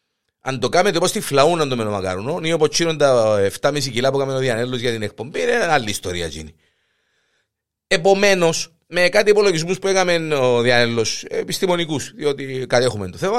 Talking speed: 165 wpm